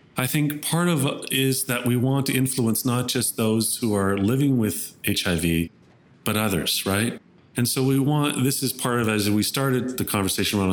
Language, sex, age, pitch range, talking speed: English, male, 40-59, 105-130 Hz, 200 wpm